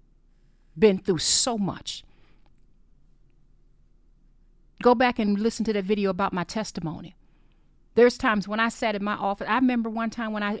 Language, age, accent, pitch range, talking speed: English, 40-59, American, 205-280 Hz, 160 wpm